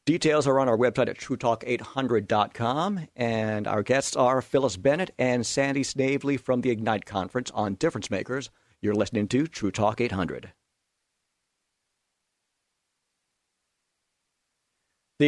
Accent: American